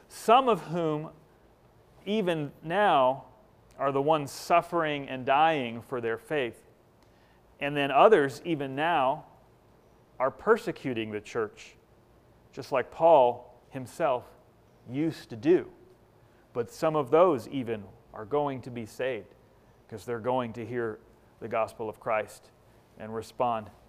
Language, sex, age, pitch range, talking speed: English, male, 40-59, 120-155 Hz, 130 wpm